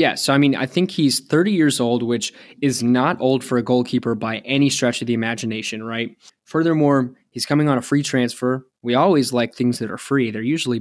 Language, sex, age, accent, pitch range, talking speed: English, male, 20-39, American, 120-140 Hz, 220 wpm